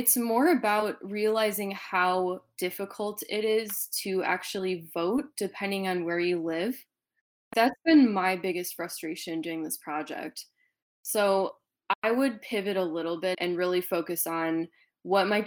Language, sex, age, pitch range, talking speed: English, female, 20-39, 170-210 Hz, 145 wpm